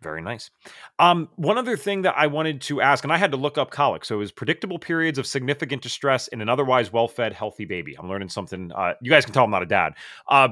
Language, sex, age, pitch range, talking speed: English, male, 30-49, 125-175 Hz, 255 wpm